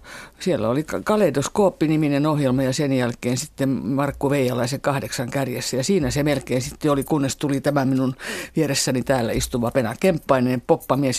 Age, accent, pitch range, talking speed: 50-69, native, 125-145 Hz, 145 wpm